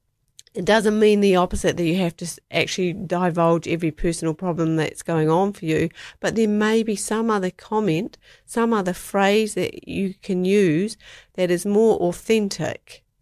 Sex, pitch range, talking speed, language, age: female, 155-190 Hz, 170 wpm, English, 50-69